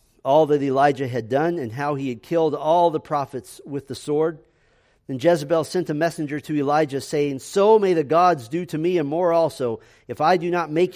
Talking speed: 215 wpm